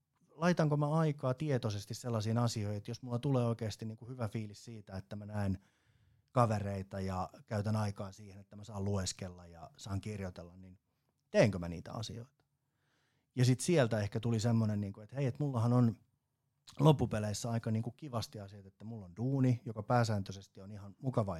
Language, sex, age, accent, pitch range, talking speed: Finnish, male, 30-49, native, 100-130 Hz, 165 wpm